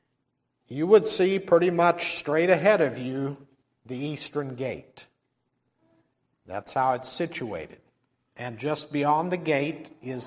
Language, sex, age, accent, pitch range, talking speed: English, male, 50-69, American, 140-190 Hz, 130 wpm